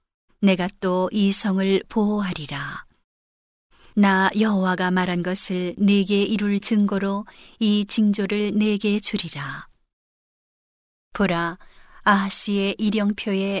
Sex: female